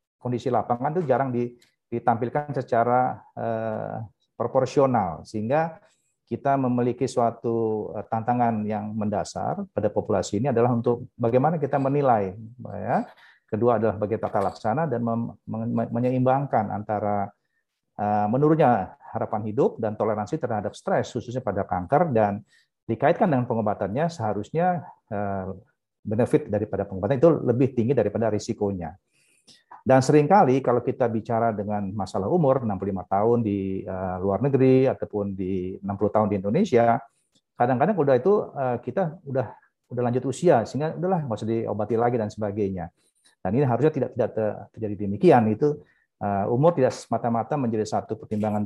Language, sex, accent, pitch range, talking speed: Indonesian, male, native, 105-130 Hz, 135 wpm